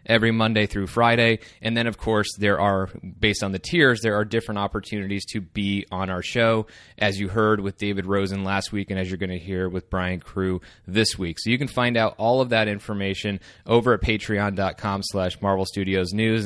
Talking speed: 205 wpm